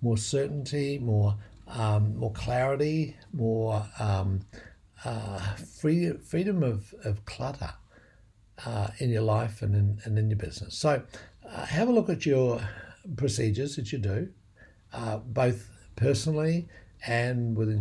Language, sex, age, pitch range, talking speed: English, male, 60-79, 105-135 Hz, 135 wpm